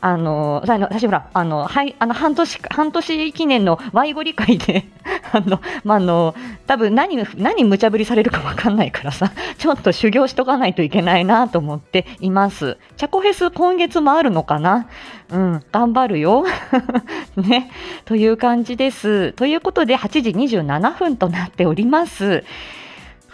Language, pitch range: Japanese, 175-265 Hz